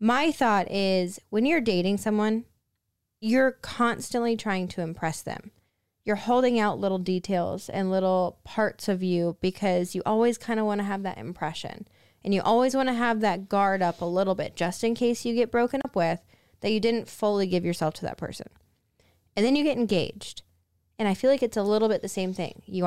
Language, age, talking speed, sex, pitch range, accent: English, 10-29, 205 wpm, female, 180-230 Hz, American